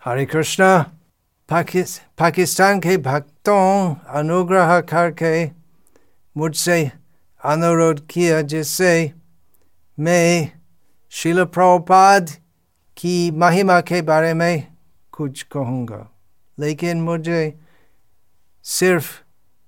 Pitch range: 140-185 Hz